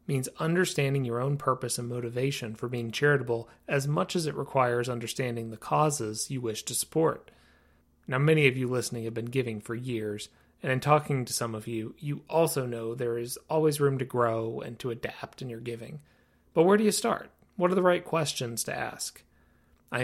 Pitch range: 120-155 Hz